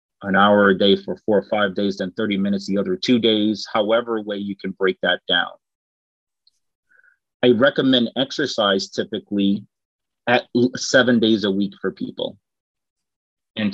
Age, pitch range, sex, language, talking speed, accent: 30-49, 100-120 Hz, male, English, 155 wpm, American